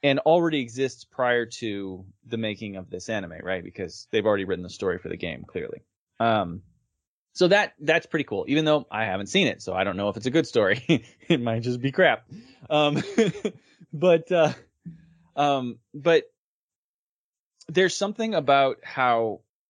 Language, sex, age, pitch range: English, male, 20-39, 105-155 Hz